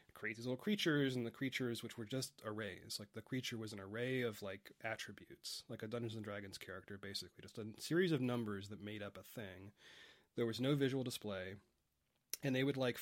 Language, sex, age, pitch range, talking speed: English, male, 30-49, 105-130 Hz, 210 wpm